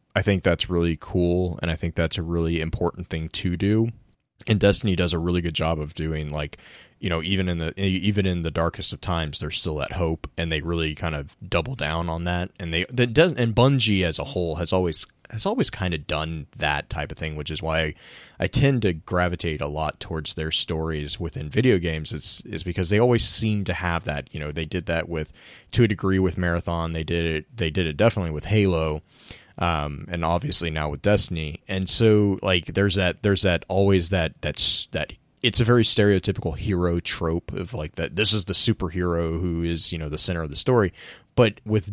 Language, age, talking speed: English, 30-49, 220 wpm